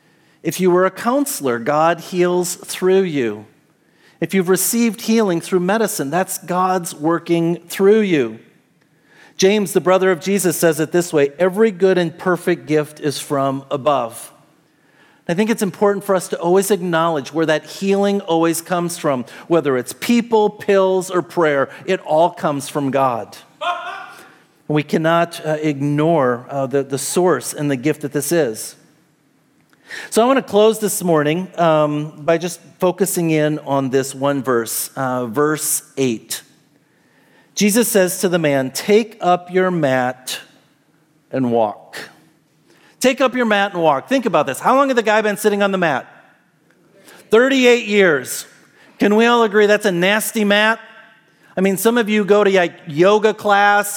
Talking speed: 160 wpm